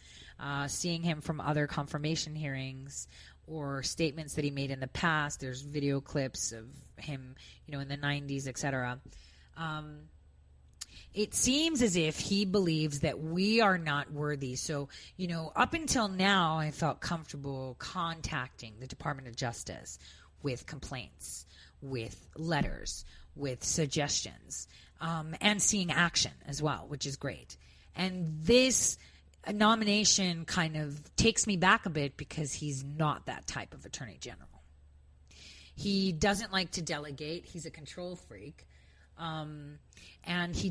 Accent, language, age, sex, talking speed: American, English, 30-49, female, 145 wpm